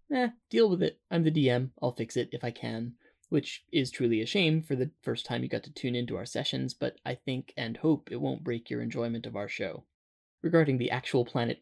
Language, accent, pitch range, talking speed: English, American, 115-145 Hz, 240 wpm